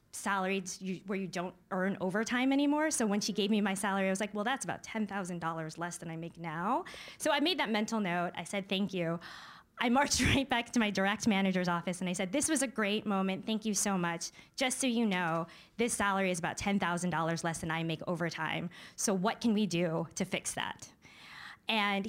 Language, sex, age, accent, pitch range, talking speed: English, female, 20-39, American, 175-220 Hz, 215 wpm